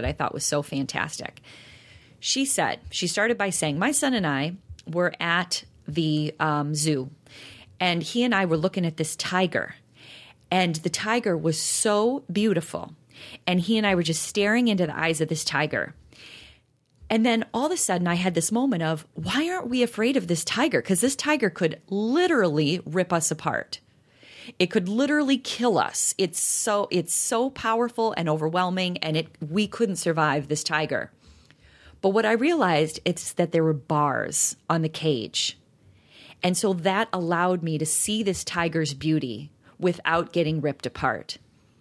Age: 30-49